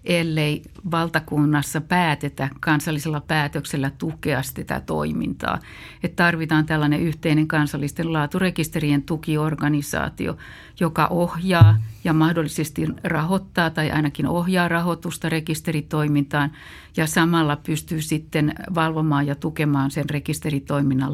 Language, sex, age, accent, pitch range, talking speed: Finnish, female, 60-79, native, 150-170 Hz, 95 wpm